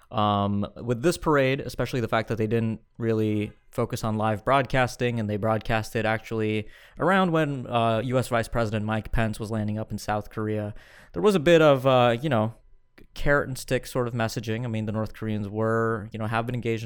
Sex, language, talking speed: male, English, 205 wpm